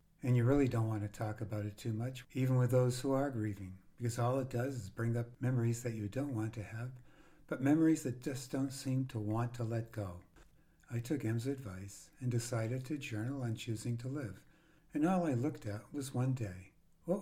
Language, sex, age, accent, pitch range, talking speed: English, male, 60-79, American, 115-140 Hz, 220 wpm